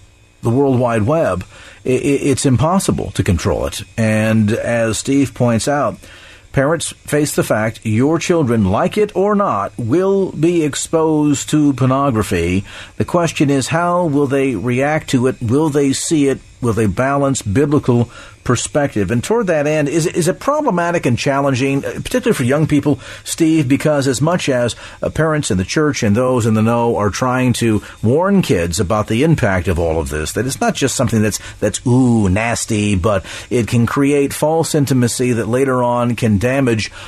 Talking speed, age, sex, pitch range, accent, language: 175 wpm, 50-69, male, 110-150 Hz, American, English